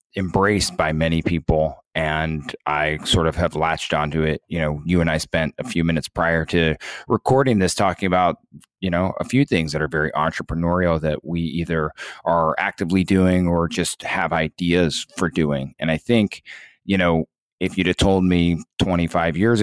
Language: English